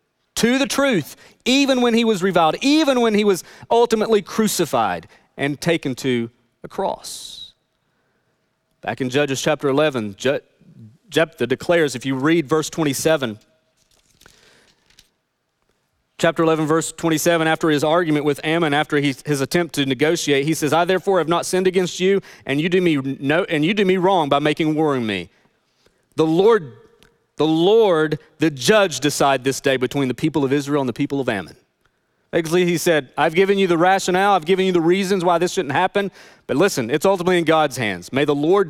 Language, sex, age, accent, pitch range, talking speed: English, male, 40-59, American, 145-195 Hz, 180 wpm